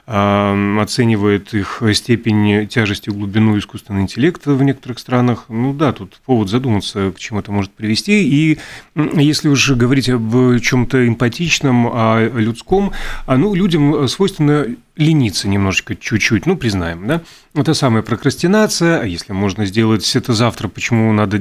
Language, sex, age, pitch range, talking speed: Russian, male, 30-49, 110-140 Hz, 140 wpm